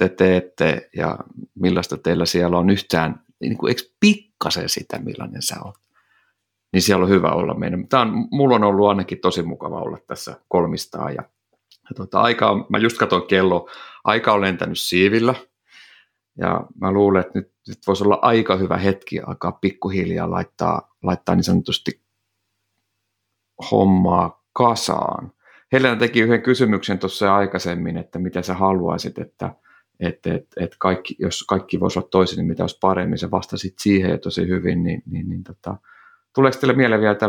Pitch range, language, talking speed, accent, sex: 90-105 Hz, Finnish, 160 wpm, native, male